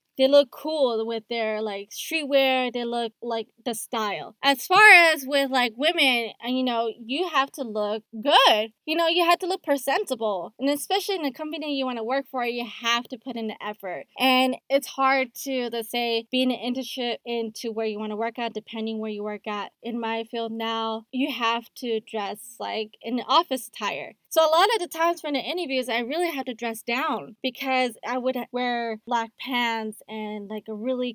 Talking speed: 210 wpm